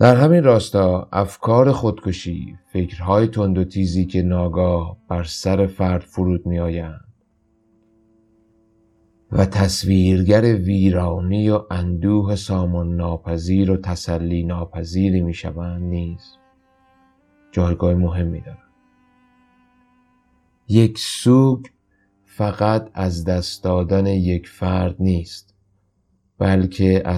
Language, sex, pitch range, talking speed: Persian, male, 90-105 Hz, 95 wpm